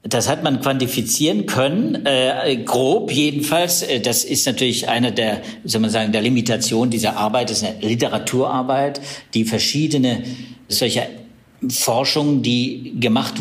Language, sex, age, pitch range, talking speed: German, male, 60-79, 115-140 Hz, 135 wpm